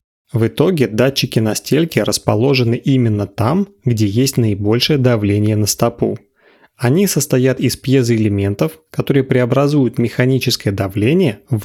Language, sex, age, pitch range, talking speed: Russian, male, 30-49, 110-140 Hz, 120 wpm